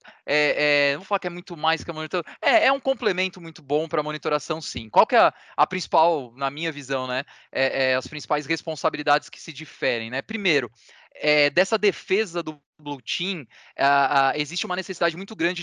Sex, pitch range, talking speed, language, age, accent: male, 155-195 Hz, 205 wpm, Portuguese, 20-39, Brazilian